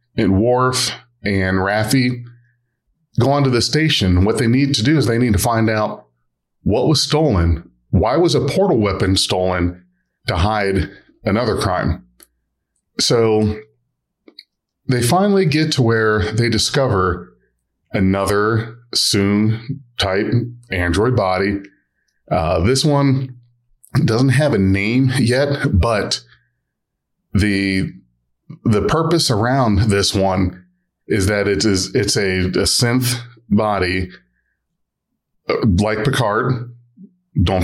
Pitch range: 95-125 Hz